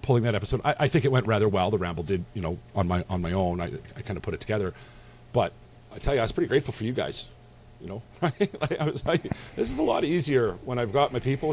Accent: American